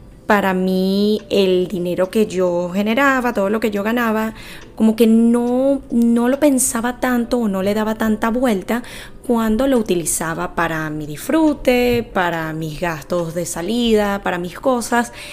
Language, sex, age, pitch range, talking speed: Spanish, female, 10-29, 175-235 Hz, 155 wpm